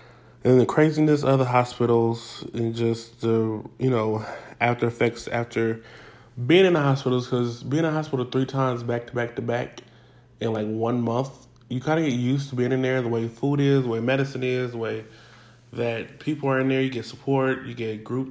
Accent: American